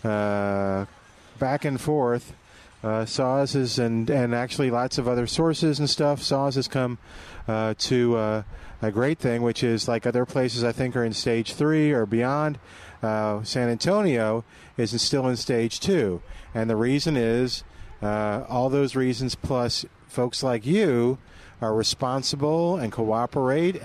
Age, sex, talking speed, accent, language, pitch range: 40-59, male, 155 wpm, American, English, 110-135 Hz